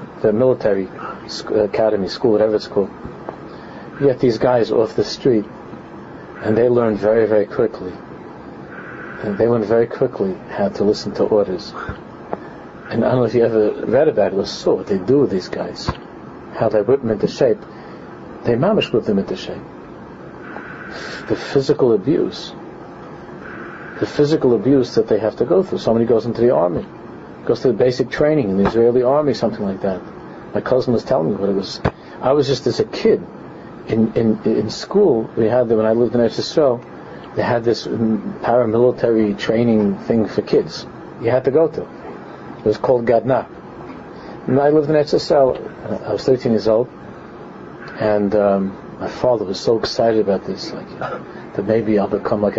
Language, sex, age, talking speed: English, male, 50-69, 180 wpm